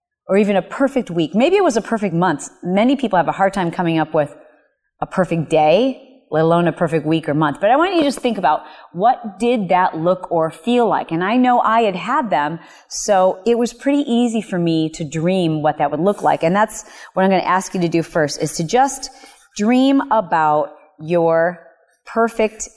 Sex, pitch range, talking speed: female, 170-240 Hz, 220 wpm